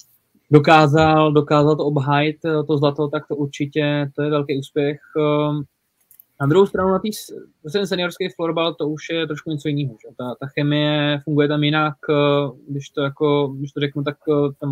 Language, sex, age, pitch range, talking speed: Czech, male, 20-39, 145-160 Hz, 165 wpm